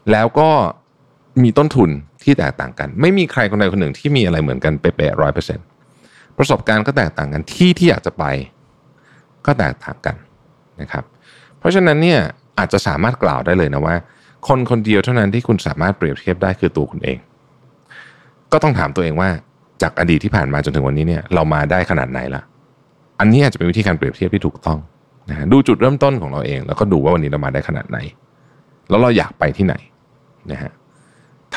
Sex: male